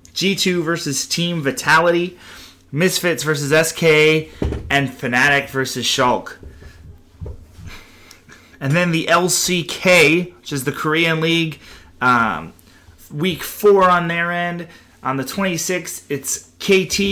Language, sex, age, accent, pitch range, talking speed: English, male, 30-49, American, 120-175 Hz, 110 wpm